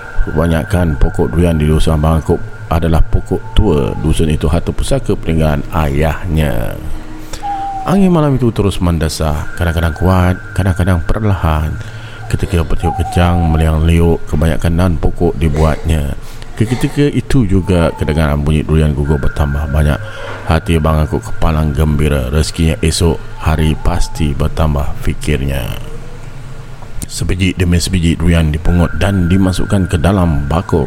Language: Malay